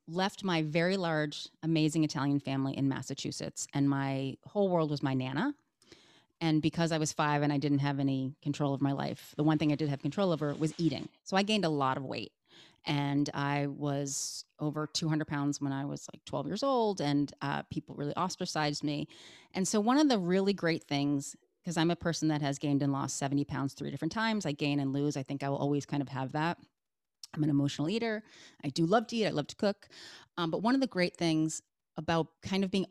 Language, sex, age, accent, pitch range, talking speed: English, female, 30-49, American, 145-190 Hz, 230 wpm